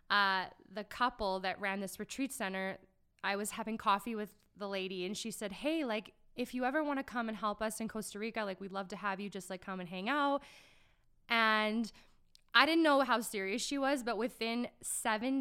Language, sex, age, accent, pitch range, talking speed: English, female, 20-39, American, 195-230 Hz, 215 wpm